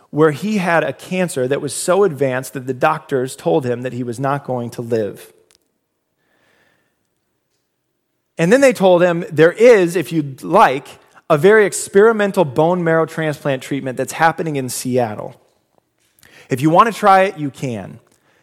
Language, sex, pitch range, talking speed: English, male, 140-185 Hz, 165 wpm